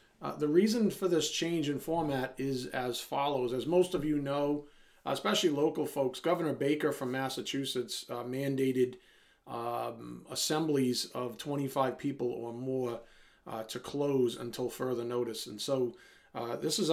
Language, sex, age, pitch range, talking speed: English, male, 40-59, 125-155 Hz, 150 wpm